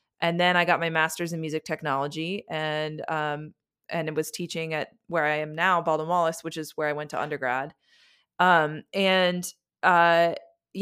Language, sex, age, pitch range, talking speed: English, female, 20-39, 155-185 Hz, 175 wpm